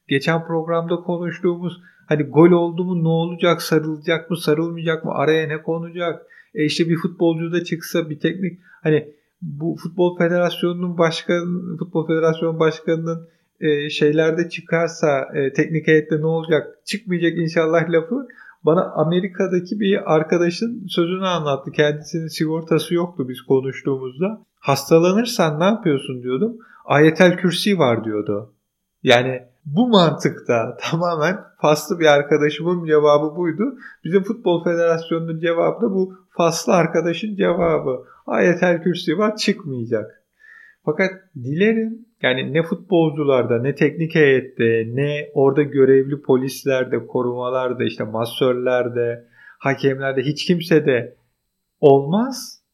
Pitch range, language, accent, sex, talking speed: 150-180 Hz, Turkish, native, male, 120 wpm